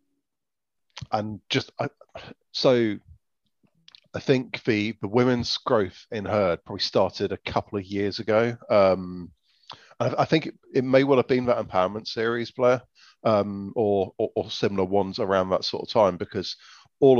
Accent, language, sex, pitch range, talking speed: British, English, male, 95-115 Hz, 160 wpm